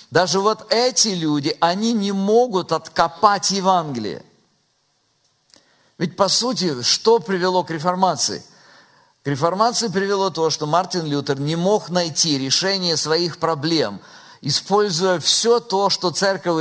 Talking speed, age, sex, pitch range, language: 125 wpm, 50-69, male, 165-215 Hz, Russian